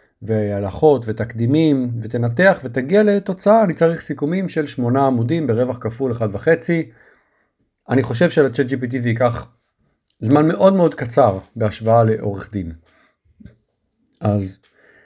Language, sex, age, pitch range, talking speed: Hebrew, male, 50-69, 115-160 Hz, 115 wpm